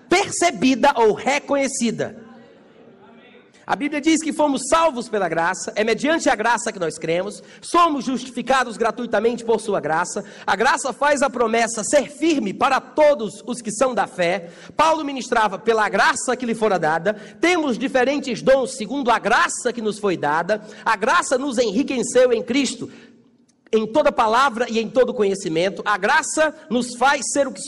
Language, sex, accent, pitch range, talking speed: Portuguese, male, Brazilian, 225-290 Hz, 165 wpm